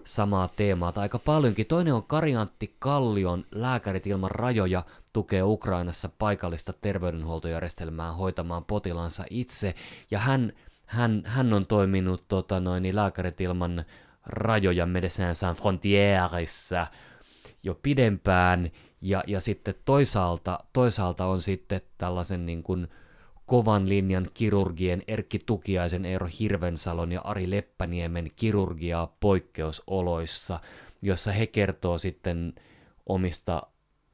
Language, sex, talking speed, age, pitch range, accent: Finnish, male, 110 wpm, 30-49, 85-100 Hz, native